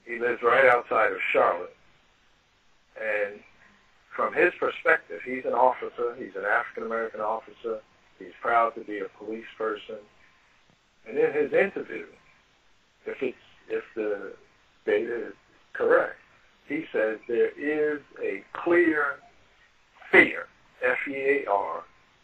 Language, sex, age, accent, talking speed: English, male, 60-79, American, 120 wpm